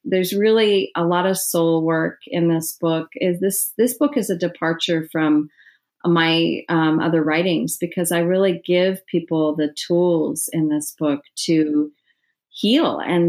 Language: English